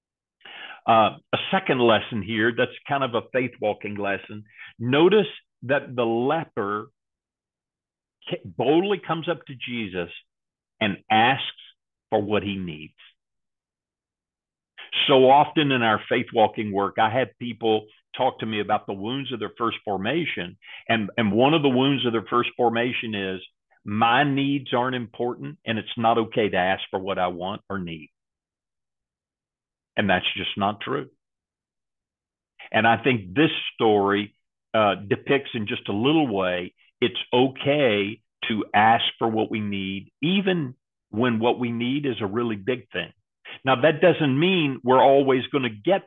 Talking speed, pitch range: 150 wpm, 105-135 Hz